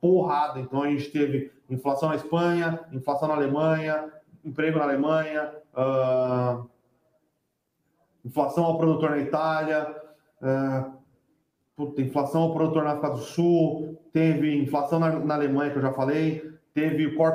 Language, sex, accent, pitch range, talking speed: Portuguese, male, Brazilian, 140-160 Hz, 140 wpm